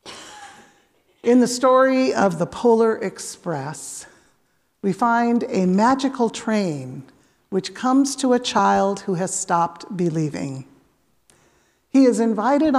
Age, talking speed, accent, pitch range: 50-69, 115 wpm, American, 180-260 Hz